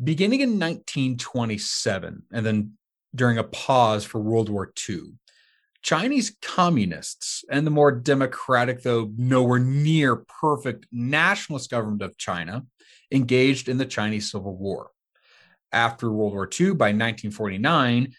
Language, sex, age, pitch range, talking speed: English, male, 30-49, 105-155 Hz, 125 wpm